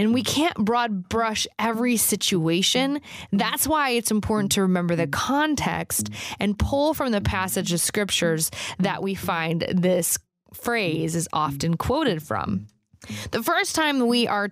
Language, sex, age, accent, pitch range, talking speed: English, female, 20-39, American, 170-230 Hz, 150 wpm